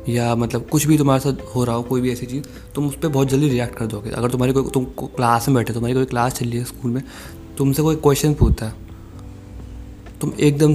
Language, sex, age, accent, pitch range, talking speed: Hindi, male, 20-39, native, 115-135 Hz, 250 wpm